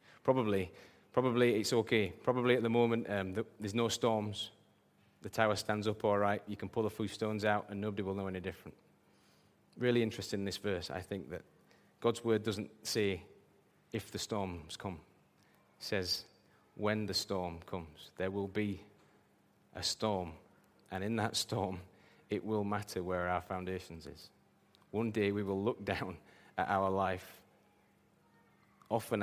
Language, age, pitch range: English, 20-39, 90-105 Hz